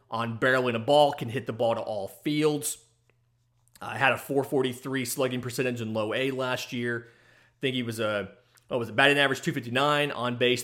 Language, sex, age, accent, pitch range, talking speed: English, male, 30-49, American, 115-135 Hz, 205 wpm